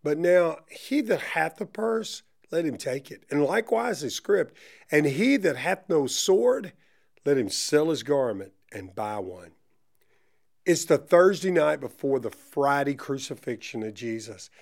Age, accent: 50-69, American